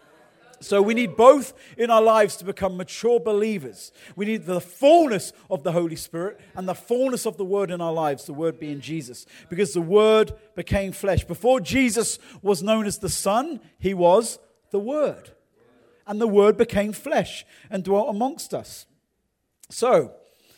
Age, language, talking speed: 40-59, English, 170 wpm